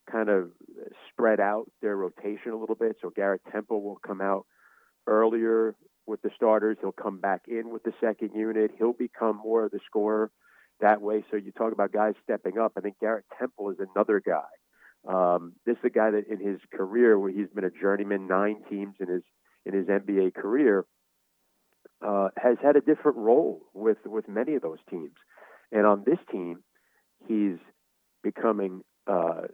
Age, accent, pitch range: 40-59, American, 100-115 Hz